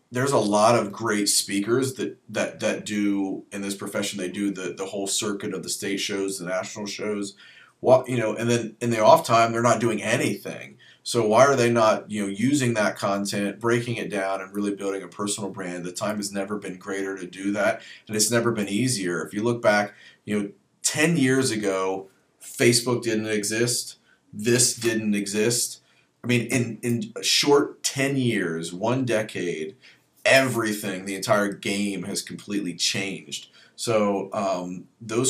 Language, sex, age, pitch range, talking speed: English, male, 30-49, 100-120 Hz, 185 wpm